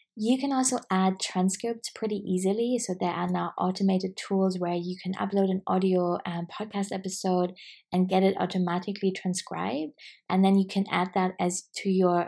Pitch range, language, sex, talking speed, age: 175-195 Hz, English, female, 175 wpm, 20-39